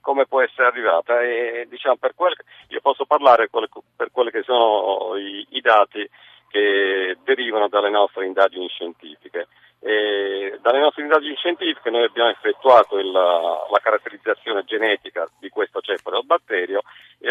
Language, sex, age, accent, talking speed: Italian, male, 50-69, native, 150 wpm